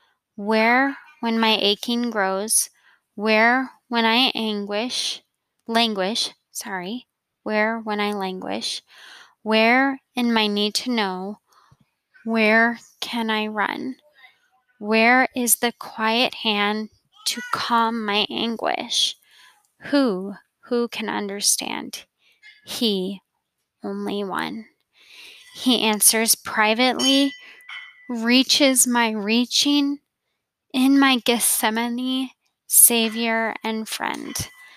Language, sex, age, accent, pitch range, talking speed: English, female, 10-29, American, 215-255 Hz, 90 wpm